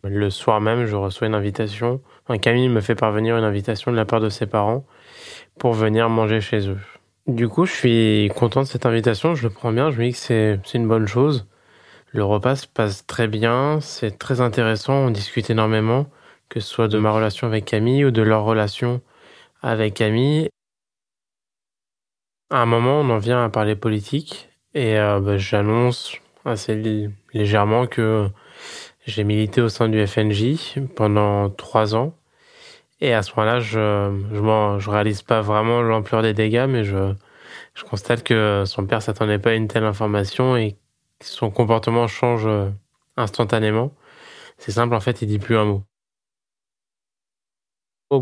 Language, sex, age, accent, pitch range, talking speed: French, male, 20-39, French, 105-125 Hz, 175 wpm